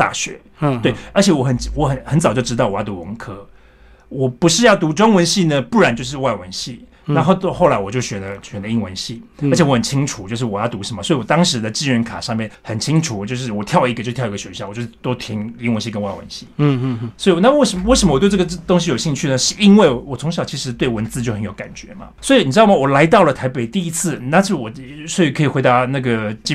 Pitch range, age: 115-170 Hz, 30-49